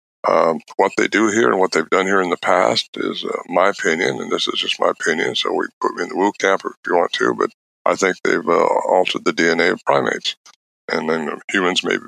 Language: English